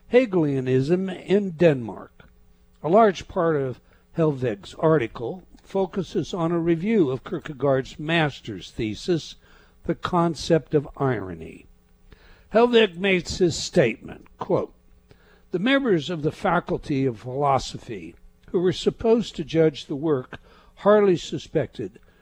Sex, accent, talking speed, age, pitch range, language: male, American, 115 wpm, 60-79, 130-180 Hz, English